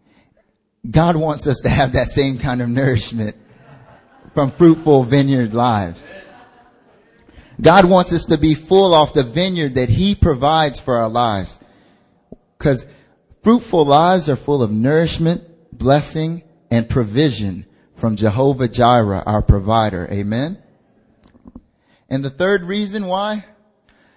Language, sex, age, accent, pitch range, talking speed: English, male, 30-49, American, 115-180 Hz, 125 wpm